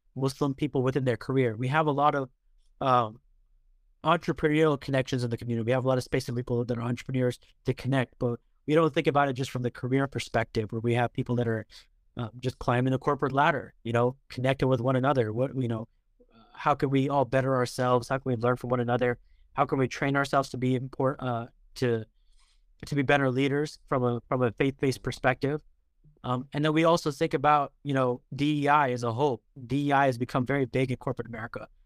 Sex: male